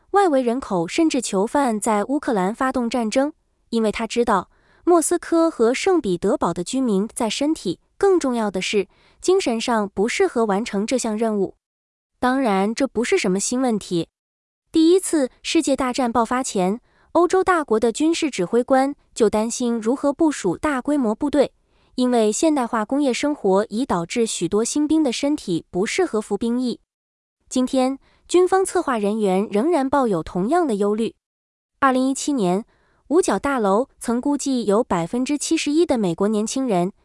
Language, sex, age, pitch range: Vietnamese, female, 20-39, 210-295 Hz